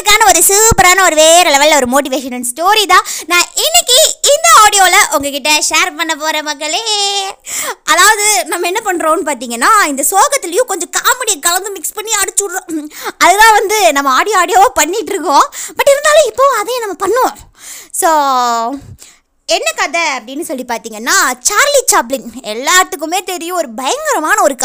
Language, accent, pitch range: Tamil, native, 300-395 Hz